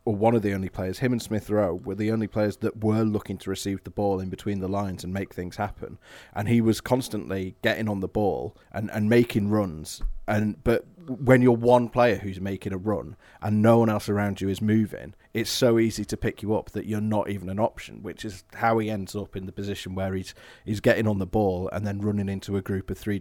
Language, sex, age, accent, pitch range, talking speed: English, male, 30-49, British, 95-110 Hz, 245 wpm